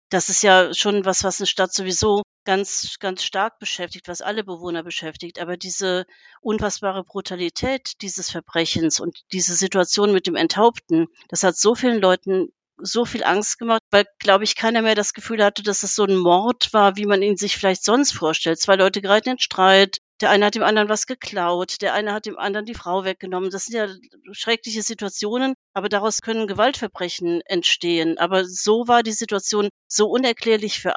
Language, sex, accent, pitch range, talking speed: German, female, German, 185-230 Hz, 190 wpm